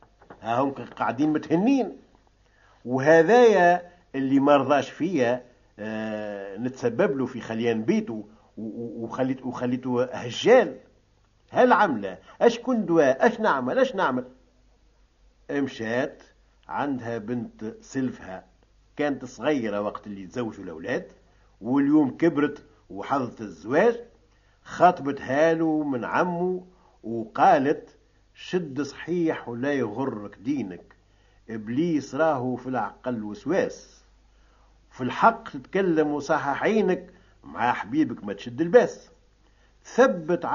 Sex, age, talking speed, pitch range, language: male, 50-69, 95 wpm, 115-175 Hz, Arabic